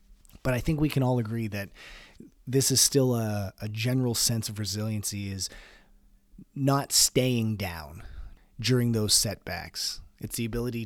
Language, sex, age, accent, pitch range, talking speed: English, male, 30-49, American, 95-120 Hz, 150 wpm